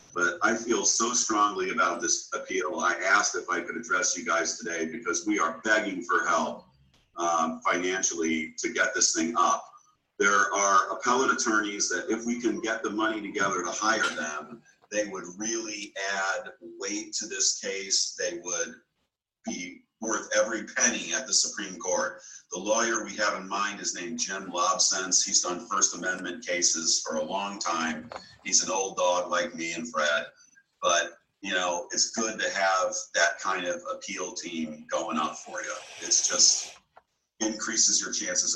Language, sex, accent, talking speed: English, male, American, 175 wpm